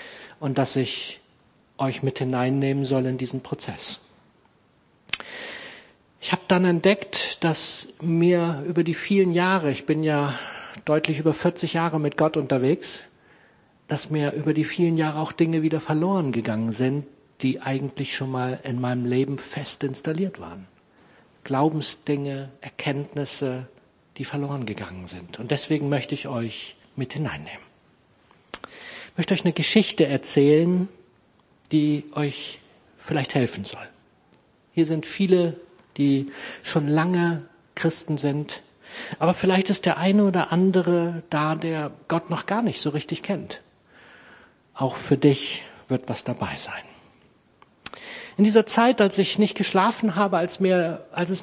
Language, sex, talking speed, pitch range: German, male, 135 wpm, 140-180 Hz